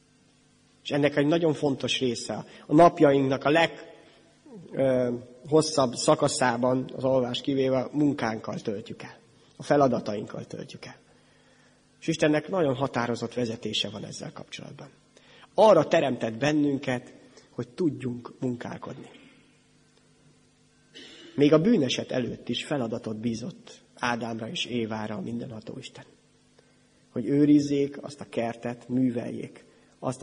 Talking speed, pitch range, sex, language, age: 110 wpm, 120-140 Hz, male, Hungarian, 30-49